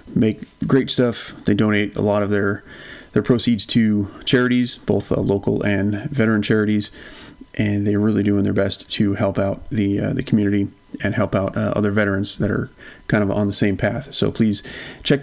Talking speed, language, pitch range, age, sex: 195 wpm, English, 105-125 Hz, 30-49, male